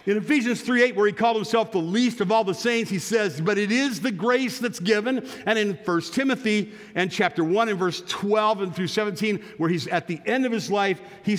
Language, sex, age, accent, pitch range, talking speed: English, male, 50-69, American, 165-225 Hz, 235 wpm